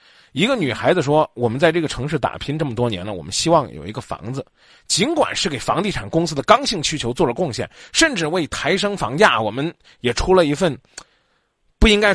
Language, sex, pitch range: Chinese, male, 125-190 Hz